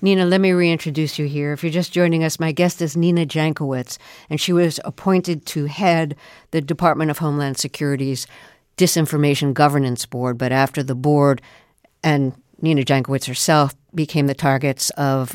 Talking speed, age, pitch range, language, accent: 165 wpm, 50-69, 135-165 Hz, English, American